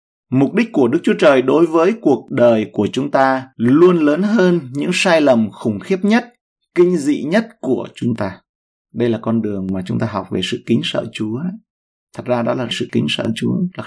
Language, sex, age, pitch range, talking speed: Vietnamese, male, 30-49, 115-150 Hz, 215 wpm